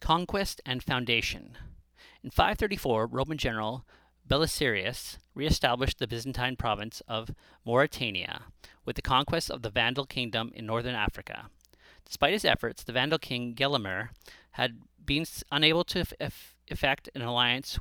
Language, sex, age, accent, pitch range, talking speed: English, male, 40-59, American, 110-130 Hz, 130 wpm